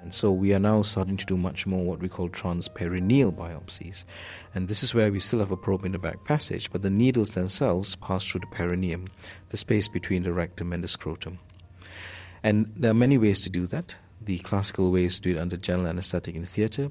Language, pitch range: English, 90-100 Hz